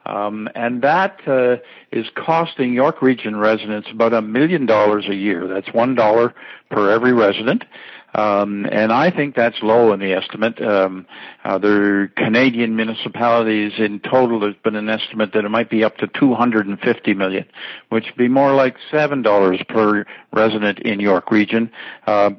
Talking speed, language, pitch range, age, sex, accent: 175 wpm, English, 105-125 Hz, 60-79, male, American